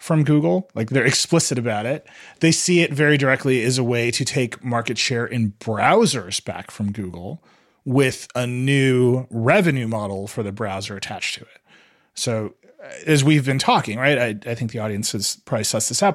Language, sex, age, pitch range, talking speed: English, male, 30-49, 110-135 Hz, 190 wpm